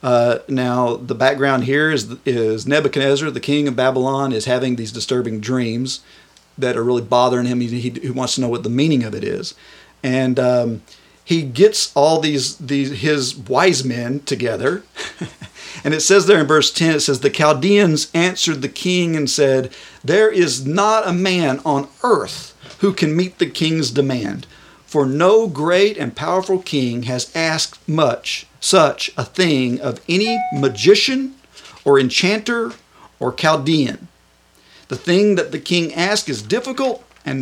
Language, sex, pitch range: English, male, 125-165 Hz